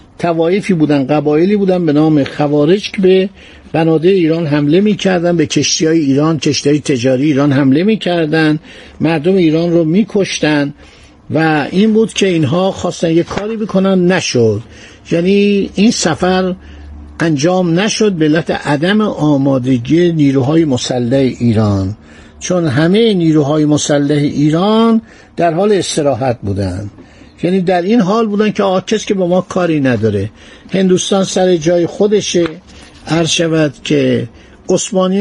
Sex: male